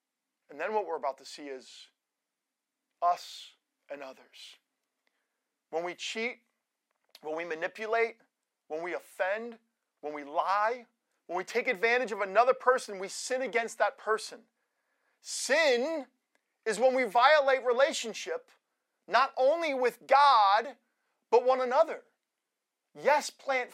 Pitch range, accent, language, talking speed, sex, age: 195-260 Hz, American, English, 125 wpm, male, 40-59